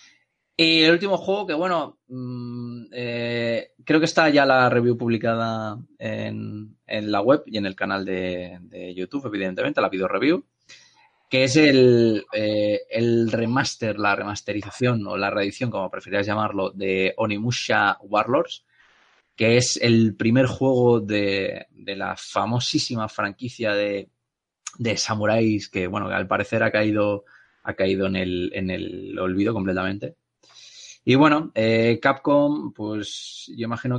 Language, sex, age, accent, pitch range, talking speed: Spanish, male, 20-39, Spanish, 100-120 Hz, 140 wpm